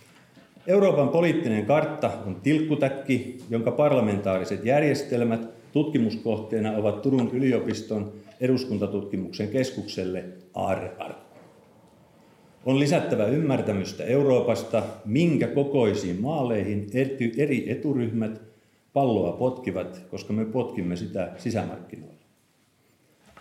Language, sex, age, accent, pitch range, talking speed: Finnish, male, 40-59, native, 105-140 Hz, 80 wpm